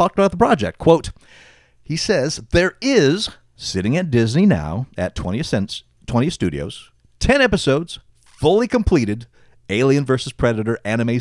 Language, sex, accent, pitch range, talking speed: English, male, American, 110-155 Hz, 140 wpm